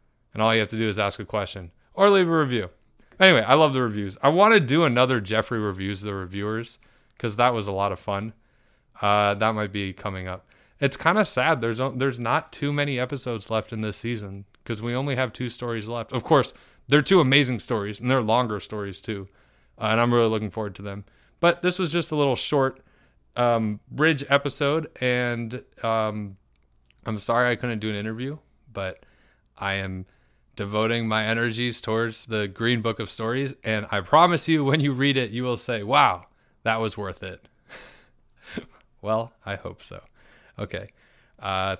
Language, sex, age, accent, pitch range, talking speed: English, male, 20-39, American, 105-135 Hz, 195 wpm